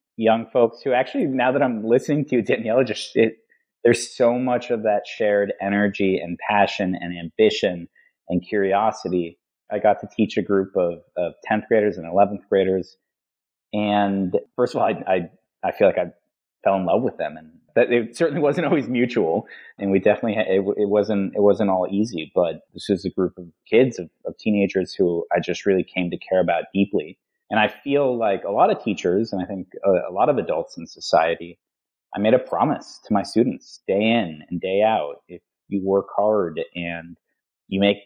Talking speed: 195 wpm